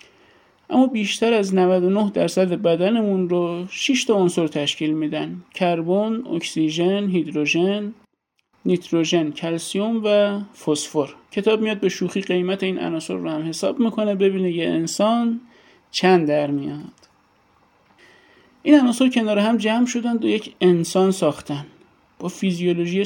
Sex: male